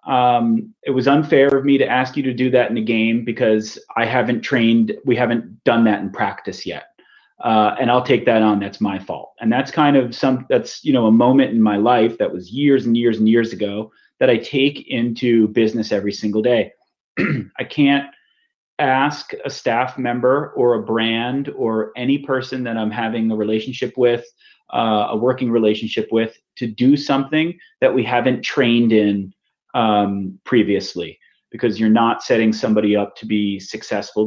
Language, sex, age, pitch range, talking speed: English, male, 30-49, 105-125 Hz, 185 wpm